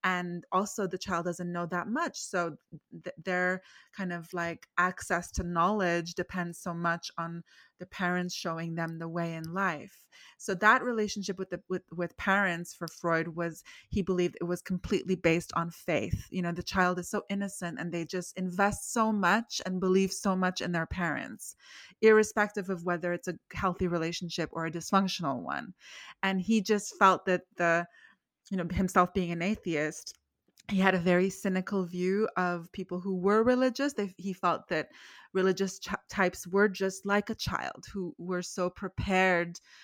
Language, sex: English, female